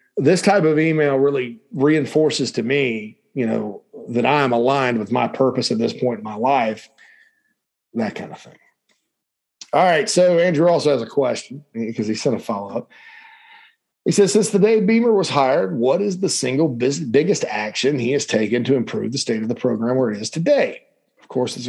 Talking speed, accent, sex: 195 wpm, American, male